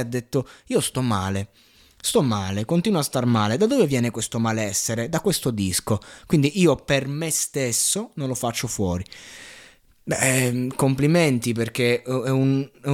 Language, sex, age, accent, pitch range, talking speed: Italian, male, 20-39, native, 115-155 Hz, 160 wpm